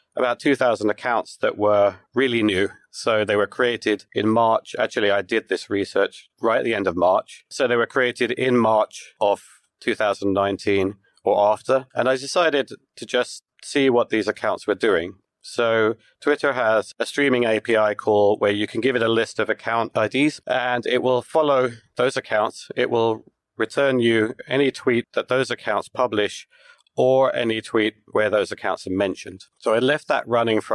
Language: English